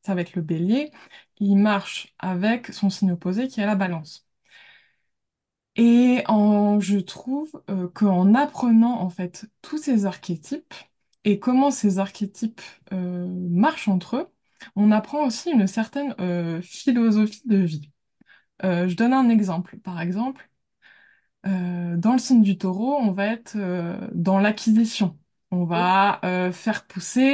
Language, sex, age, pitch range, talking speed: French, female, 20-39, 180-230 Hz, 150 wpm